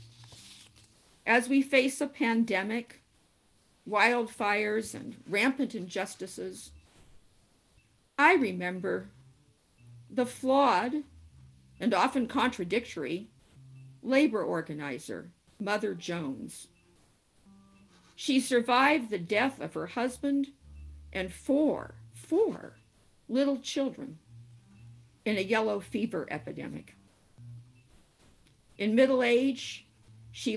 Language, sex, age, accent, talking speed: English, female, 50-69, American, 80 wpm